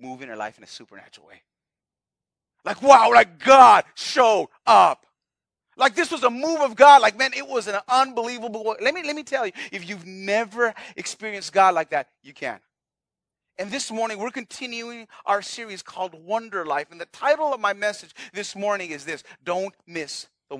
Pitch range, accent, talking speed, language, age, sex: 180-270 Hz, American, 190 wpm, English, 30-49, male